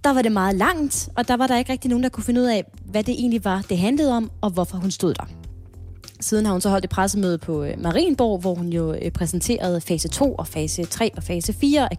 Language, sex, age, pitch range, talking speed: Danish, female, 20-39, 180-240 Hz, 255 wpm